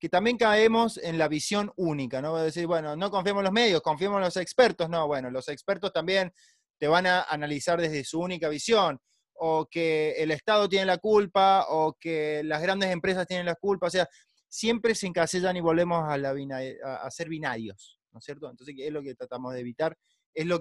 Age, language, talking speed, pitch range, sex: 20-39, Spanish, 215 wpm, 145-195 Hz, male